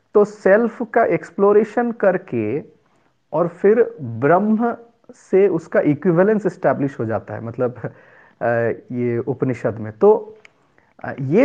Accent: native